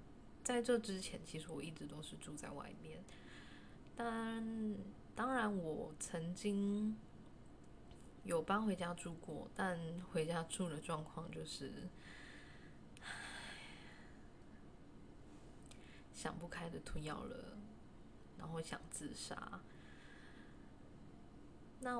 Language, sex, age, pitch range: Chinese, female, 10-29, 165-210 Hz